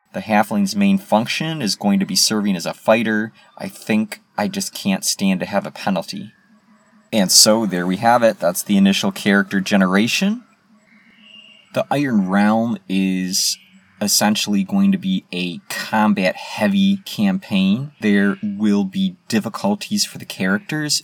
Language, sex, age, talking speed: English, male, 30-49, 145 wpm